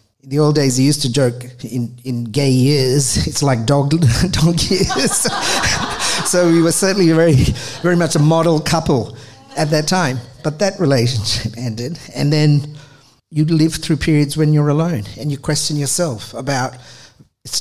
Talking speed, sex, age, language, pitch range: 165 wpm, male, 50-69, English, 130-165 Hz